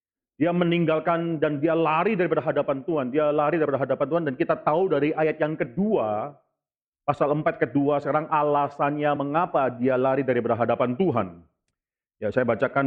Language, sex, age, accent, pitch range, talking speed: Indonesian, male, 40-59, native, 140-170 Hz, 165 wpm